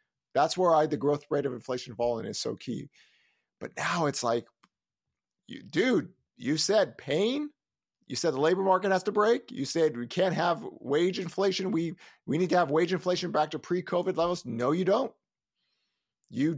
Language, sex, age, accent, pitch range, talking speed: English, male, 50-69, American, 120-170 Hz, 185 wpm